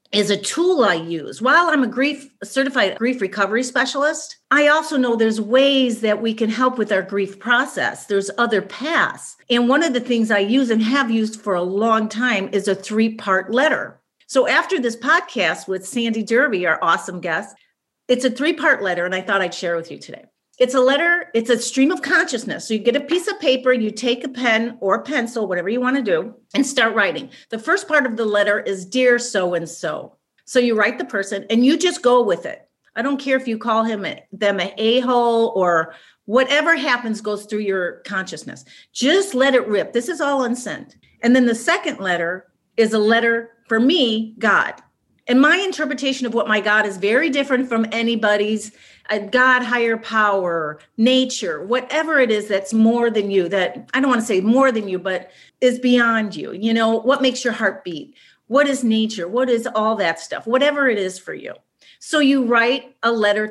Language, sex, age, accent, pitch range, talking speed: English, female, 40-59, American, 210-265 Hz, 205 wpm